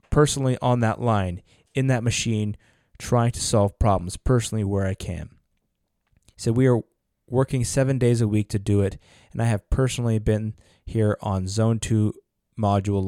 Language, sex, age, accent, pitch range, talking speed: English, male, 20-39, American, 95-115 Hz, 170 wpm